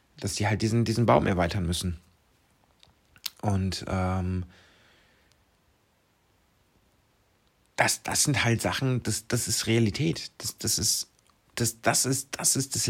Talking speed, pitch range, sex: 130 wpm, 100-135 Hz, male